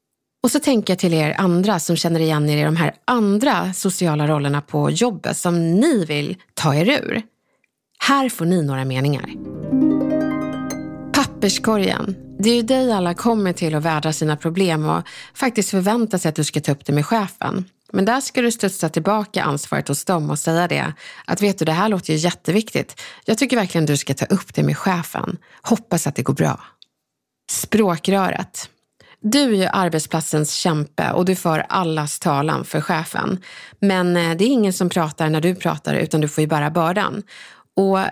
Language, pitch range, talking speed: Swedish, 160-220 Hz, 185 wpm